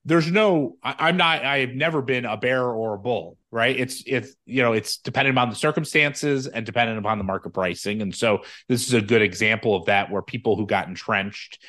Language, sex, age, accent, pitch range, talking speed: English, male, 30-49, American, 110-145 Hz, 225 wpm